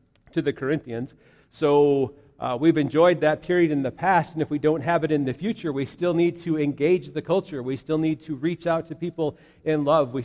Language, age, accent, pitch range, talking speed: English, 50-69, American, 140-165 Hz, 230 wpm